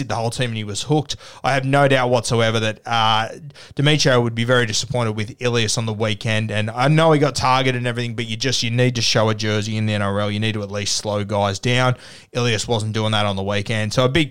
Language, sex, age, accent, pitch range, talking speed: English, male, 20-39, Australian, 115-140 Hz, 260 wpm